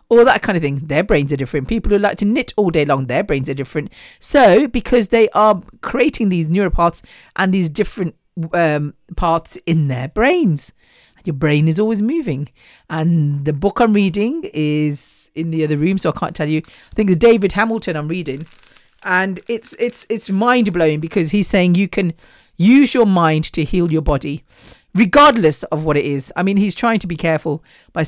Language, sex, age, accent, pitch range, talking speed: English, female, 40-59, British, 150-205 Hz, 195 wpm